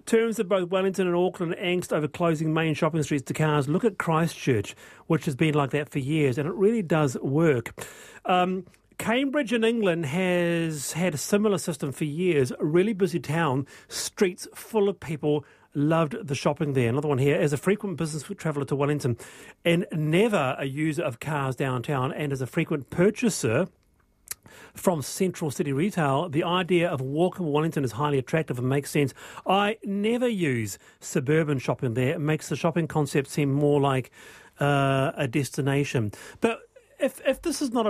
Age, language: 40-59, English